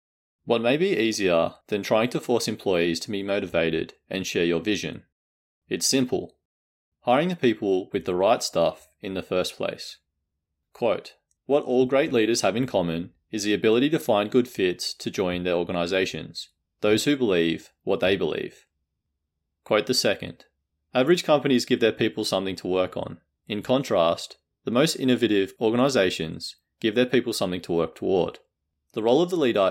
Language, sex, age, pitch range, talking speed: English, male, 30-49, 85-115 Hz, 170 wpm